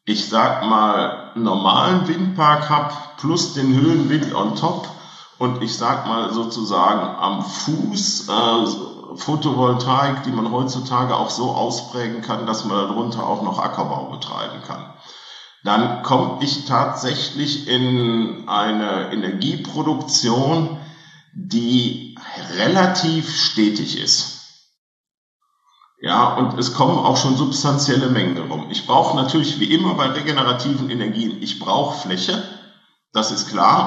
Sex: male